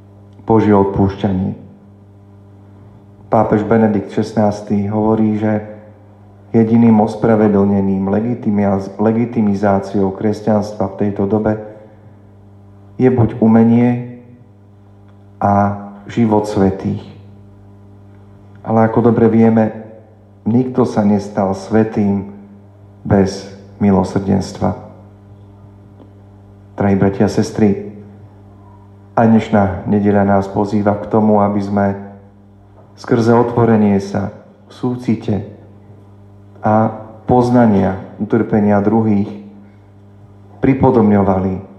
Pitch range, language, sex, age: 100-110 Hz, Slovak, male, 40-59